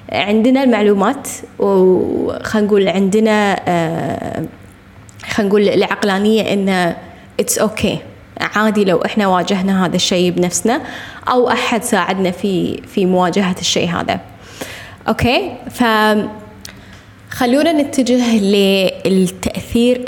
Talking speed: 85 wpm